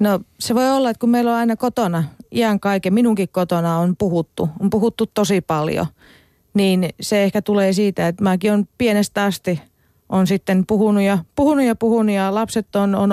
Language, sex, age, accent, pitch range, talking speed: Finnish, female, 40-59, native, 170-205 Hz, 185 wpm